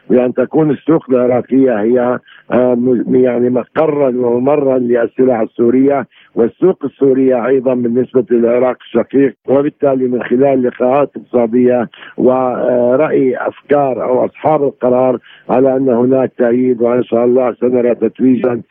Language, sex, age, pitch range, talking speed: Arabic, male, 60-79, 120-130 Hz, 110 wpm